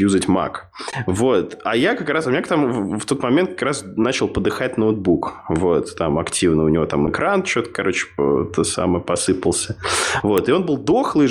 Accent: native